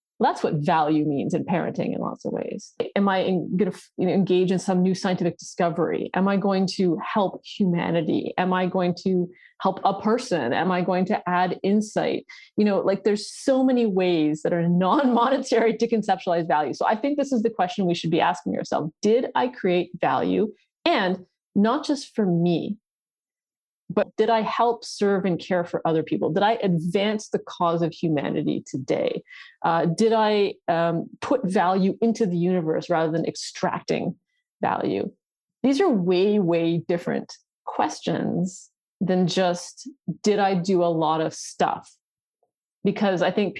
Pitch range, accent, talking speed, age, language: 175-215 Hz, American, 170 wpm, 30-49, English